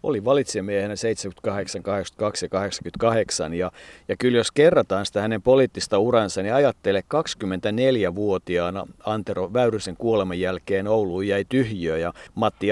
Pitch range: 100-125 Hz